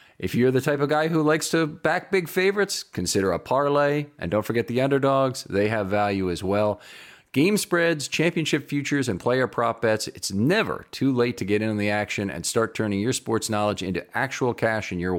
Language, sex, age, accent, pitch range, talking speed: English, male, 40-59, American, 100-135 Hz, 215 wpm